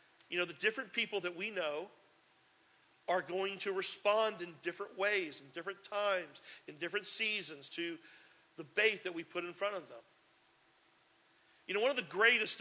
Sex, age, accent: male, 50-69, American